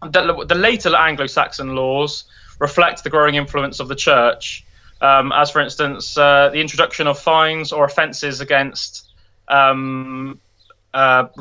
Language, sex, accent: English, male, British